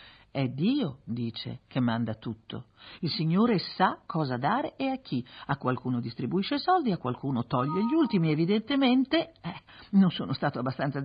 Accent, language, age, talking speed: native, Italian, 50-69, 165 wpm